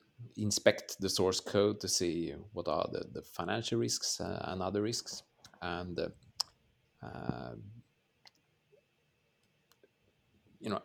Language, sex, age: Swedish, male, 30-49